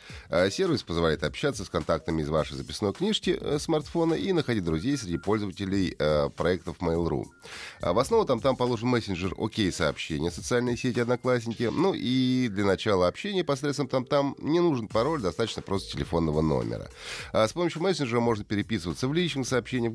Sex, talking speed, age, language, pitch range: male, 155 wpm, 30-49, Russian, 85-130 Hz